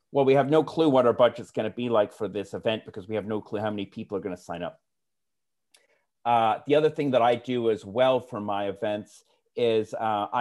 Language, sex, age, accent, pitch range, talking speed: English, male, 40-59, American, 105-135 Hz, 230 wpm